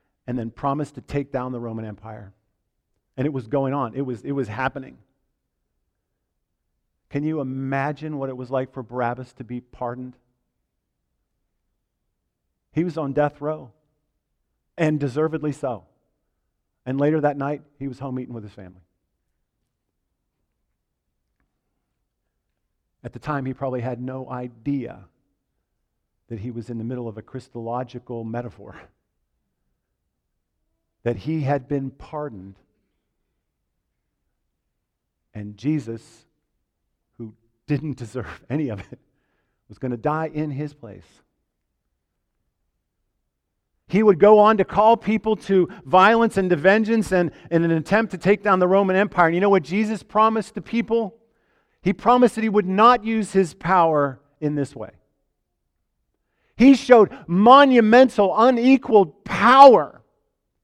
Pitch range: 120-185 Hz